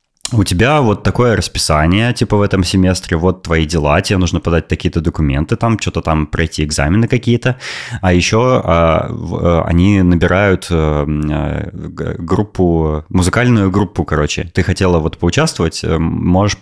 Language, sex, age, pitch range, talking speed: Russian, male, 20-39, 80-100 Hz, 130 wpm